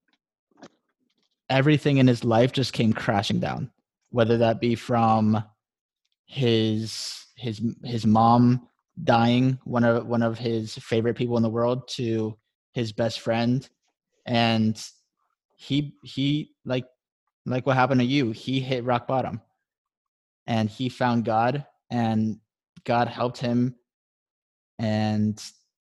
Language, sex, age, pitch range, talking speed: English, male, 20-39, 110-125 Hz, 125 wpm